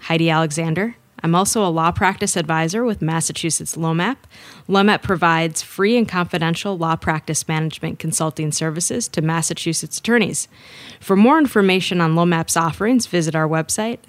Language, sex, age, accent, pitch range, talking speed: English, female, 20-39, American, 165-205 Hz, 140 wpm